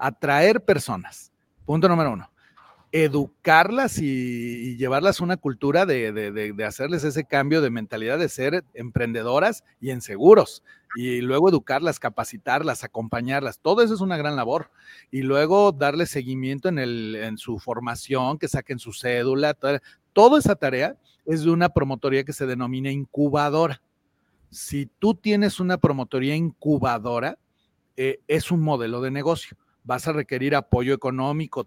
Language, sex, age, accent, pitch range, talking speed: Spanish, male, 40-59, Mexican, 130-160 Hz, 150 wpm